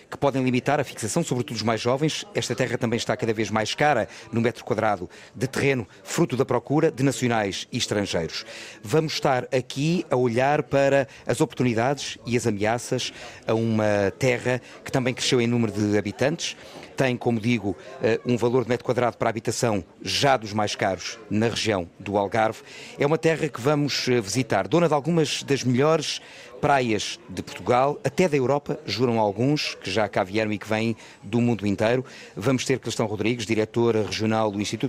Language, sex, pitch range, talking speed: Portuguese, male, 110-130 Hz, 180 wpm